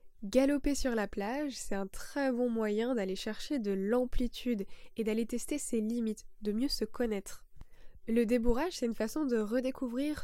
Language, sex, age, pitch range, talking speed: French, female, 10-29, 210-250 Hz, 170 wpm